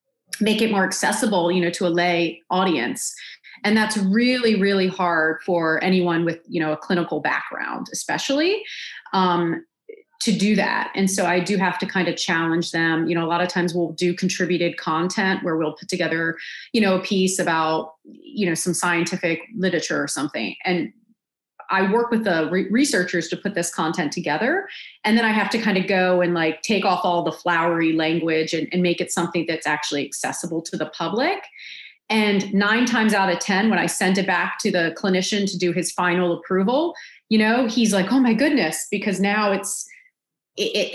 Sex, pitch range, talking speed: female, 170-210 Hz, 195 wpm